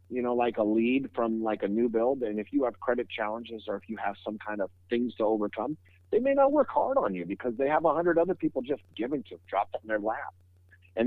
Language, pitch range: English, 95-125 Hz